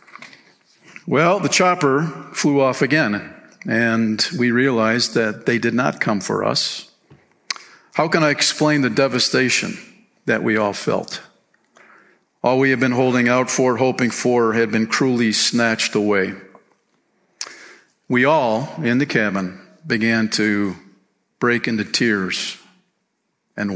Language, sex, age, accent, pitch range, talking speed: English, male, 50-69, American, 110-140 Hz, 130 wpm